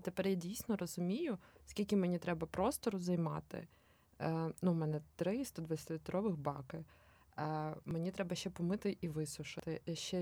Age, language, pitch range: 20-39, Ukrainian, 165-195 Hz